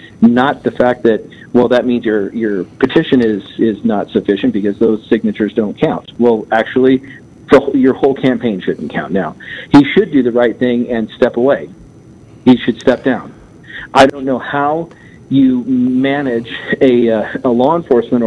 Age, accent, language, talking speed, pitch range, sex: 50-69, American, English, 170 wpm, 115-140 Hz, male